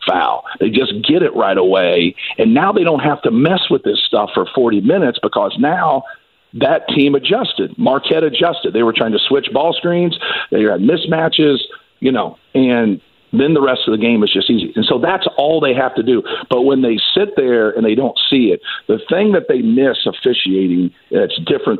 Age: 50-69